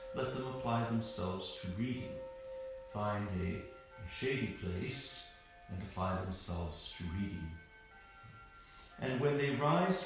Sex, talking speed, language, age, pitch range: male, 115 wpm, English, 60-79, 90-125 Hz